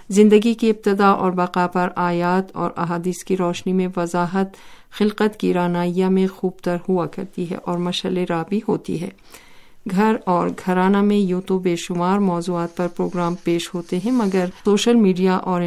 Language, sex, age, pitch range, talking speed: Urdu, female, 50-69, 175-195 Hz, 175 wpm